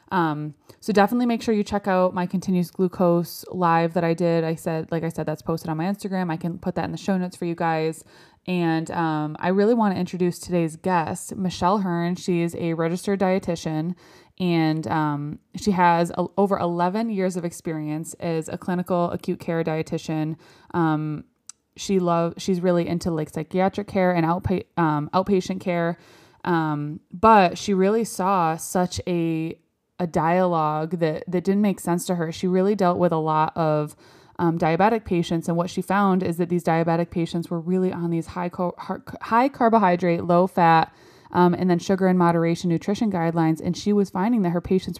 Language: English